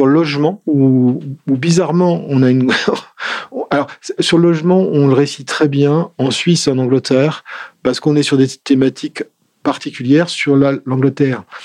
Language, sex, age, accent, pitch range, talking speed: French, male, 40-59, French, 125-150 Hz, 150 wpm